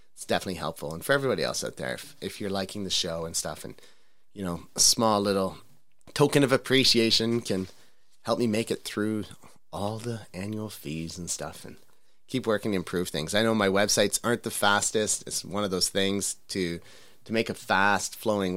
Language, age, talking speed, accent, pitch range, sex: English, 30-49, 200 wpm, American, 90-115 Hz, male